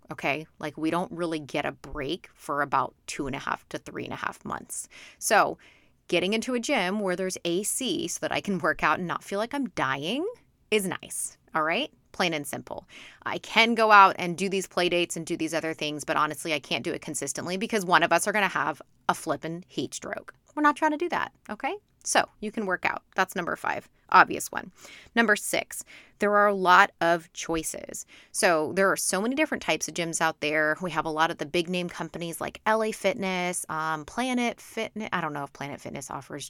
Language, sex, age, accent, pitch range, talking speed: English, female, 30-49, American, 155-200 Hz, 225 wpm